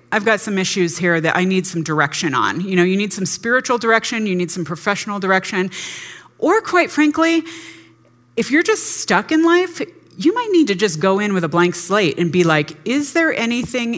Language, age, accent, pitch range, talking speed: English, 30-49, American, 155-200 Hz, 210 wpm